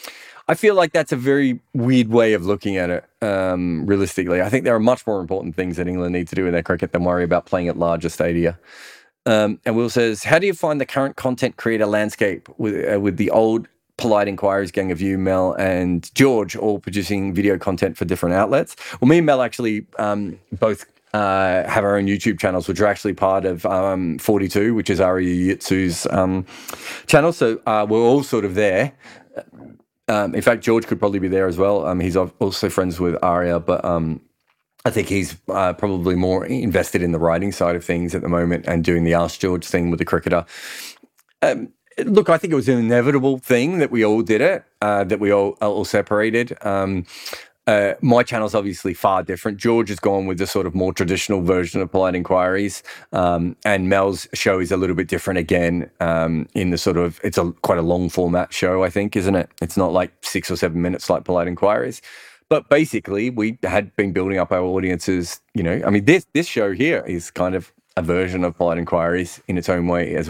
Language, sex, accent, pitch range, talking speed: English, male, Australian, 90-105 Hz, 215 wpm